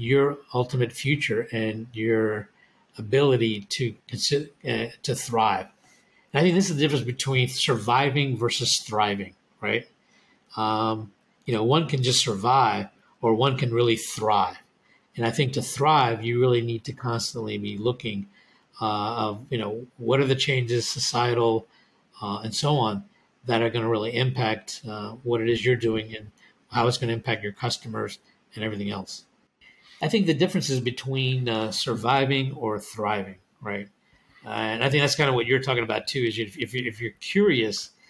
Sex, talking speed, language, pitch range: male, 170 wpm, English, 110-135 Hz